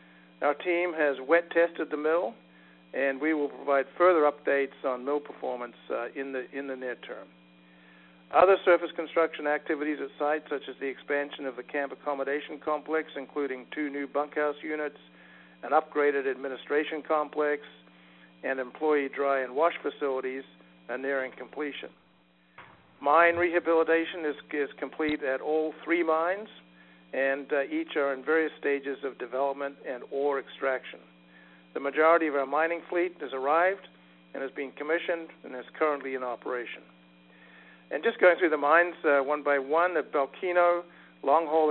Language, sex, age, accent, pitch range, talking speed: English, male, 60-79, American, 130-155 Hz, 155 wpm